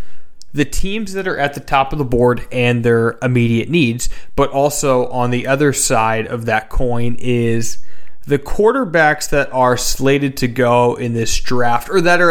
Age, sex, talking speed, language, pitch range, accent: 30-49, male, 180 wpm, English, 120-145 Hz, American